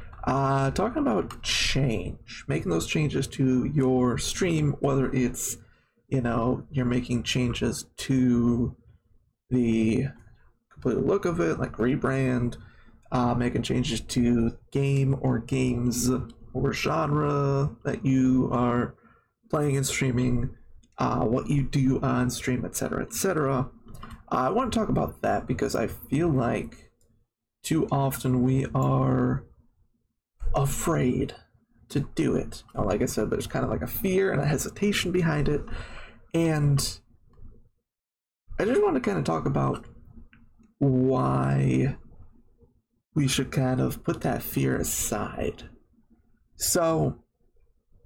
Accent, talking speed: American, 125 wpm